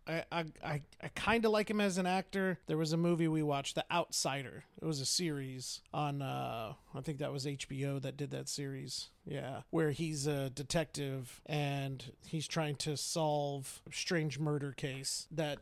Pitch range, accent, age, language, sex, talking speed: 145-165 Hz, American, 30-49, English, male, 190 wpm